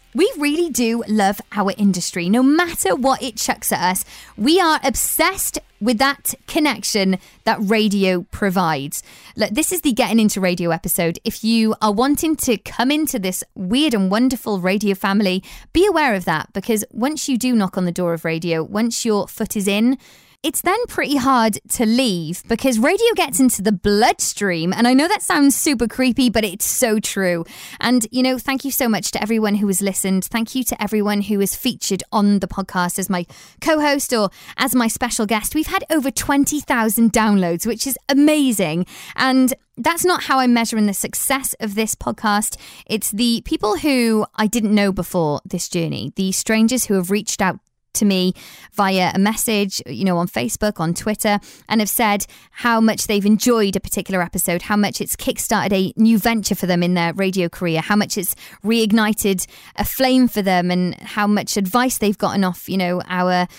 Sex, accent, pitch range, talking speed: female, British, 195-255 Hz, 190 wpm